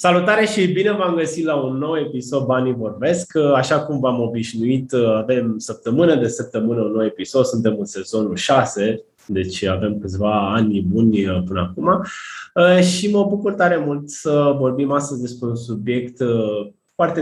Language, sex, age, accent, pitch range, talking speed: Romanian, male, 20-39, native, 115-150 Hz, 155 wpm